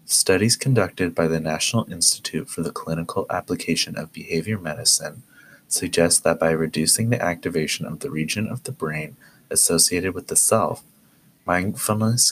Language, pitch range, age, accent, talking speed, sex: English, 80-100 Hz, 30-49, American, 145 wpm, male